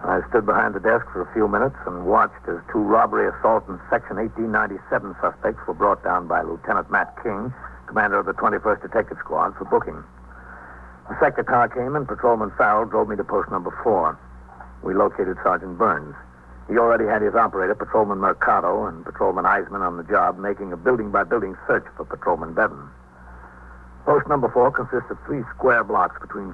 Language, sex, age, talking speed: English, male, 60-79, 180 wpm